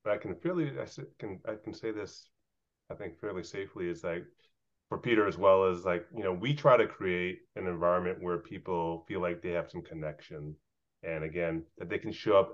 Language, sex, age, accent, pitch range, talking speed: English, male, 30-49, American, 85-130 Hz, 215 wpm